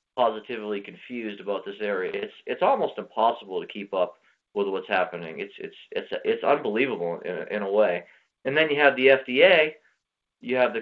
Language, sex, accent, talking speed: English, male, American, 190 wpm